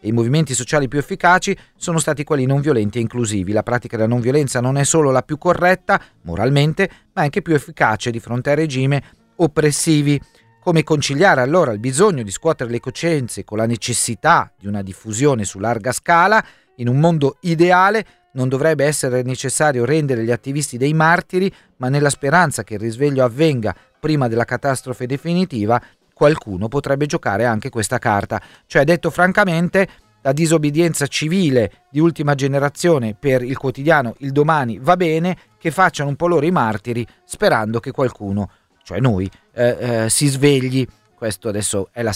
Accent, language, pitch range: native, Italian, 115-165 Hz